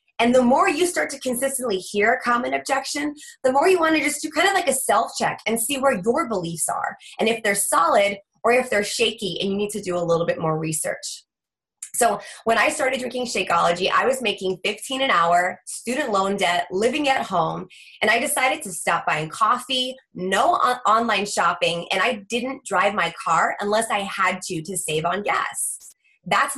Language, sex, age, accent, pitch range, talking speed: English, female, 20-39, American, 185-270 Hz, 205 wpm